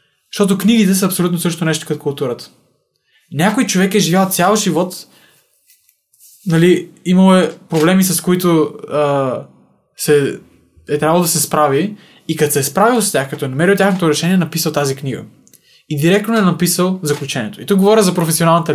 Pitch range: 155-195 Hz